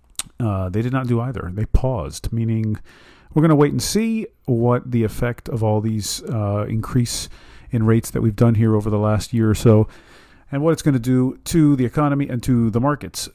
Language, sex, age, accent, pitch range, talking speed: English, male, 40-59, American, 100-130 Hz, 215 wpm